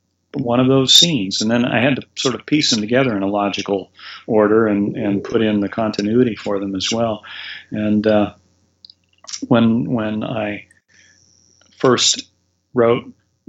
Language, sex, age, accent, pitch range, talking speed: English, male, 40-59, American, 100-120 Hz, 155 wpm